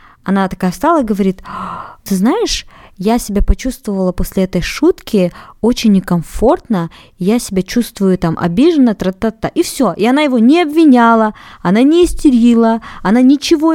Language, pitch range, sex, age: Russian, 185-235 Hz, female, 20-39